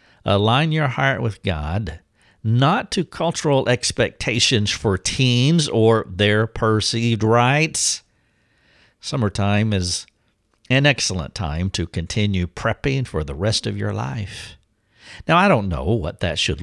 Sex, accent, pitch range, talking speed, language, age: male, American, 95-120 Hz, 130 wpm, English, 50-69